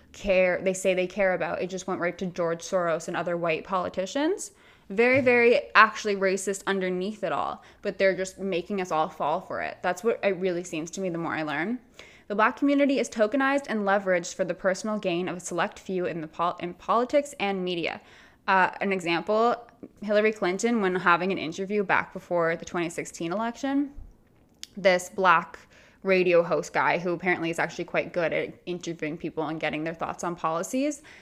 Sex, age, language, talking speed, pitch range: female, 20-39, English, 190 wpm, 175-225 Hz